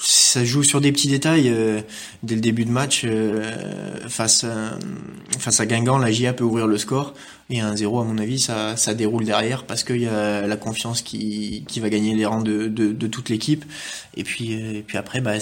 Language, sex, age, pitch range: French, male, 20-39, 110-125 Hz